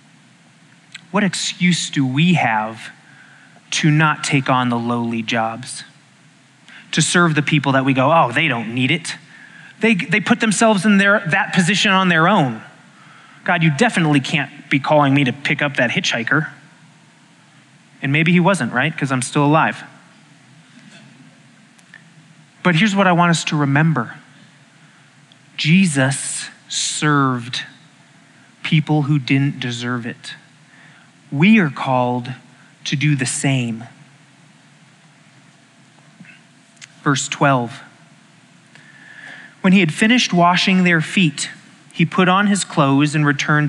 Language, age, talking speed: English, 30-49, 130 wpm